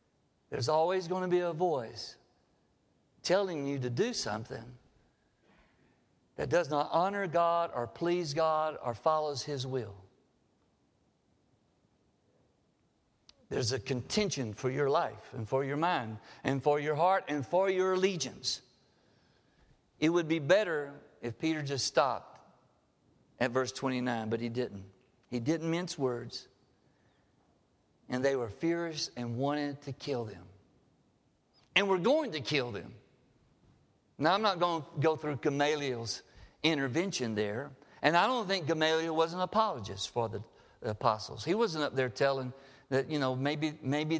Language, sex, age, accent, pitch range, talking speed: English, male, 60-79, American, 130-175 Hz, 145 wpm